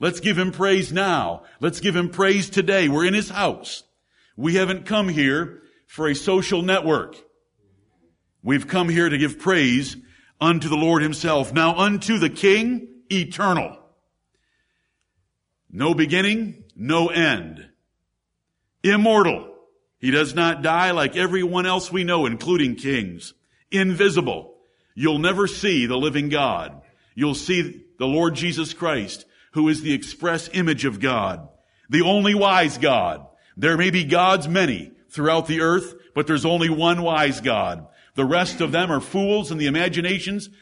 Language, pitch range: English, 145-185 Hz